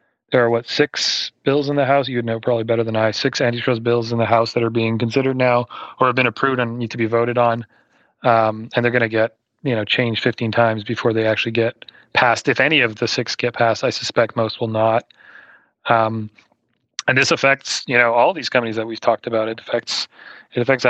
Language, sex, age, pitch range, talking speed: English, male, 30-49, 115-125 Hz, 230 wpm